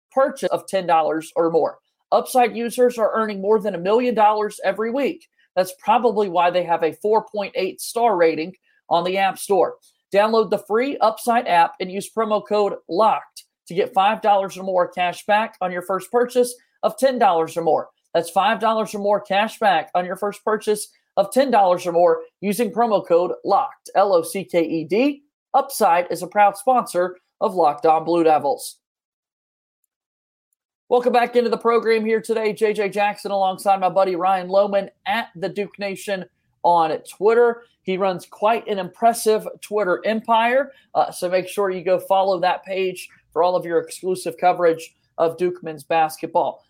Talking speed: 165 wpm